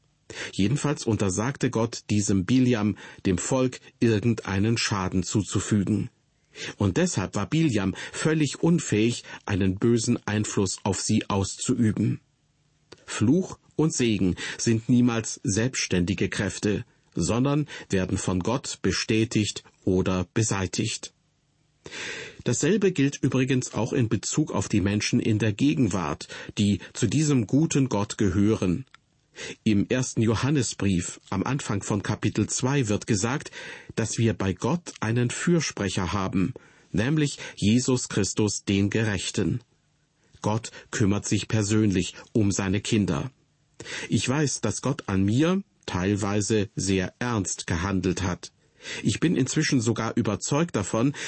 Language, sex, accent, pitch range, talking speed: German, male, German, 100-135 Hz, 120 wpm